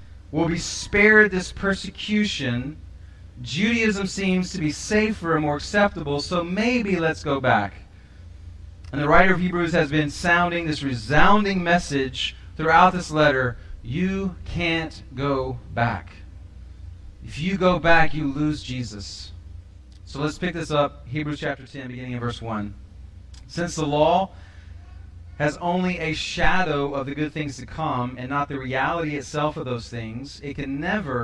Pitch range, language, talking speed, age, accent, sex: 120-170 Hz, English, 150 wpm, 30-49, American, male